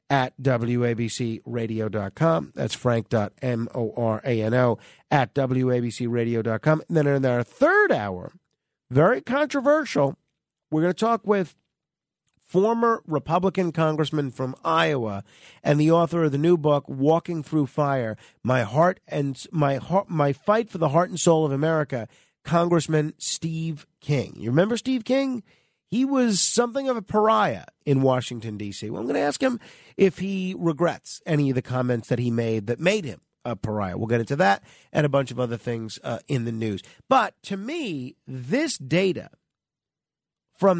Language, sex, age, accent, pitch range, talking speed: English, male, 40-59, American, 125-180 Hz, 155 wpm